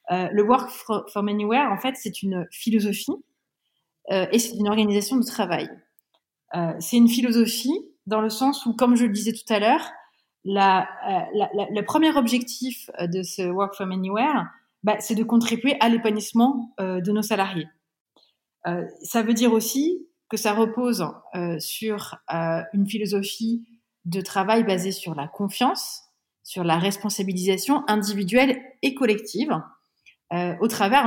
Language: French